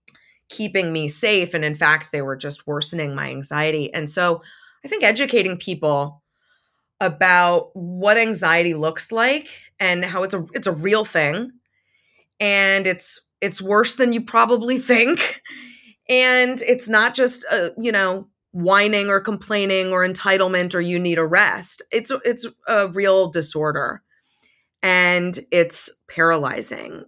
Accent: American